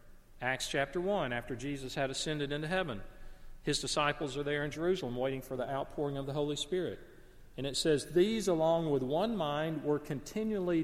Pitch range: 135-170 Hz